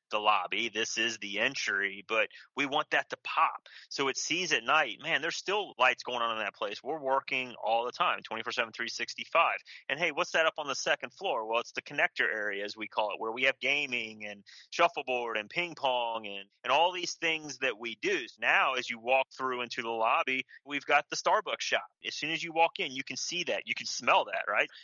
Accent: American